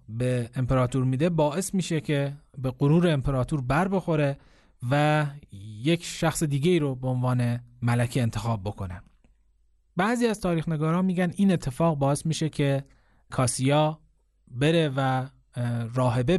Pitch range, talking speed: 130-165 Hz, 130 wpm